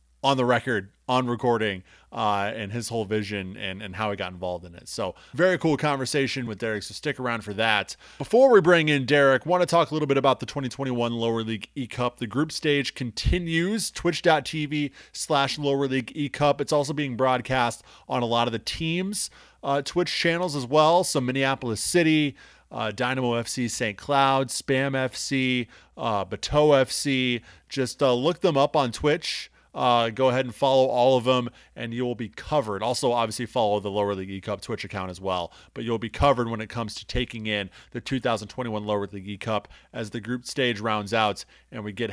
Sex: male